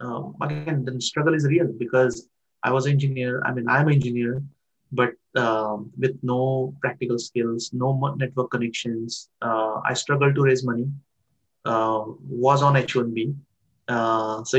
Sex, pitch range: male, 120-135 Hz